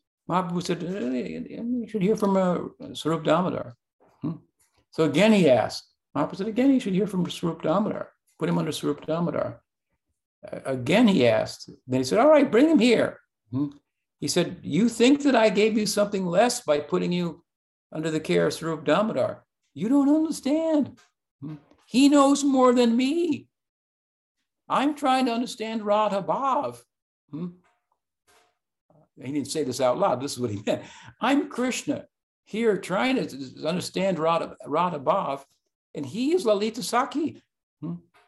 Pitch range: 160-250 Hz